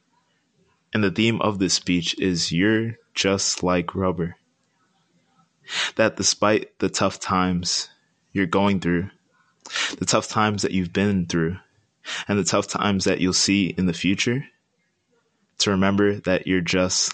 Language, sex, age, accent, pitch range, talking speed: English, male, 20-39, American, 85-100 Hz, 145 wpm